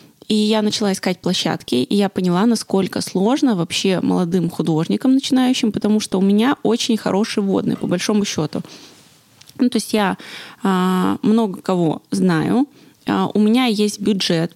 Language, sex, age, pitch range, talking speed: Russian, female, 20-39, 180-225 Hz, 155 wpm